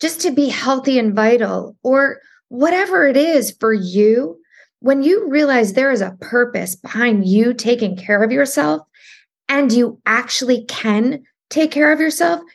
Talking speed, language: 160 wpm, English